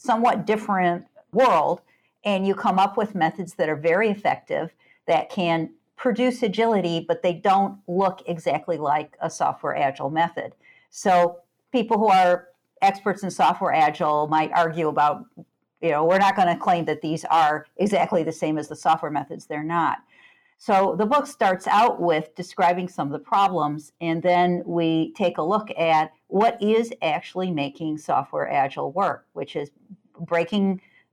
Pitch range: 160-200 Hz